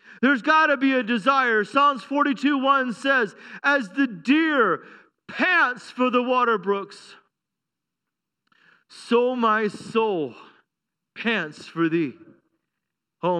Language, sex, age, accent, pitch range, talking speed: English, male, 40-59, American, 215-290 Hz, 105 wpm